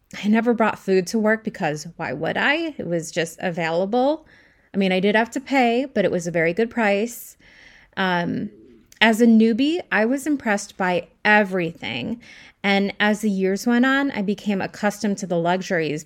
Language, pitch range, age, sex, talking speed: English, 175-220 Hz, 20-39, female, 185 wpm